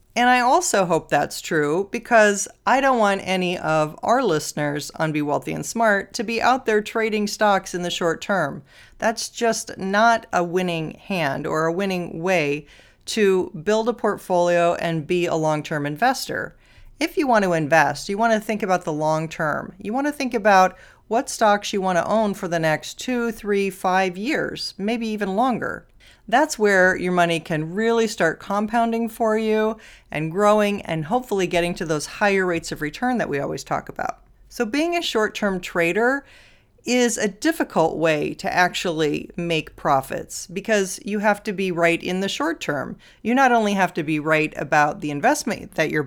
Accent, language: American, English